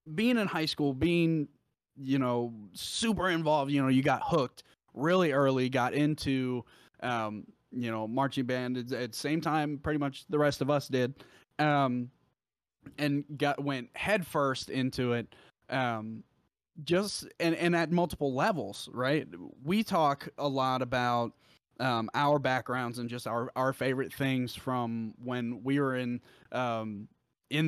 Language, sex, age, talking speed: English, male, 20-39, 155 wpm